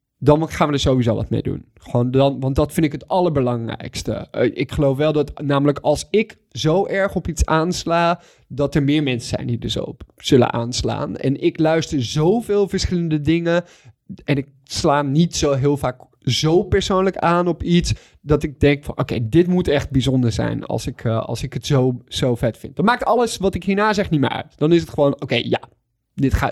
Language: Dutch